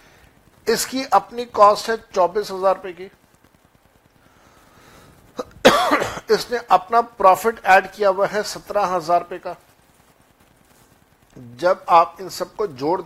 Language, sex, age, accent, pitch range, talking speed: Hindi, male, 60-79, native, 170-200 Hz, 110 wpm